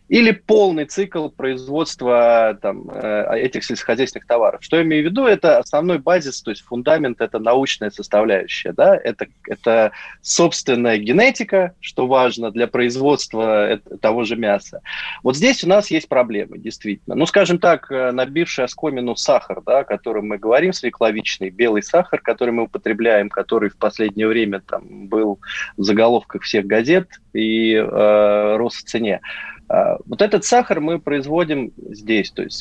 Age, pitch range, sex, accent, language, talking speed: 20-39, 110-155 Hz, male, native, Russian, 150 wpm